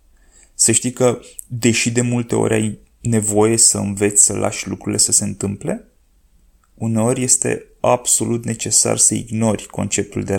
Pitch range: 100-120 Hz